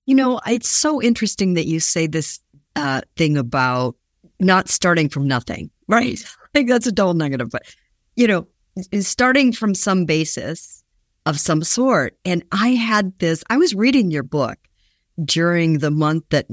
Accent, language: American, English